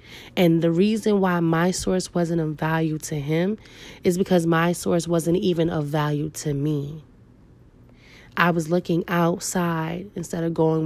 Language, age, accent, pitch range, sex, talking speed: English, 20-39, American, 160-200 Hz, female, 155 wpm